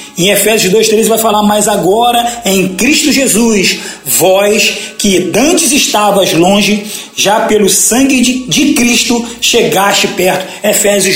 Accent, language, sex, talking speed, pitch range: Brazilian, Portuguese, male, 130 wpm, 195-245 Hz